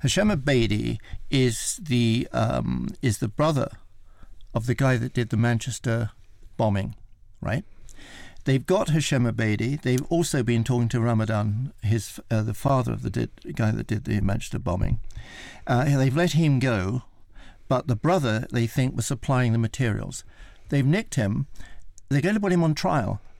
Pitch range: 110-140 Hz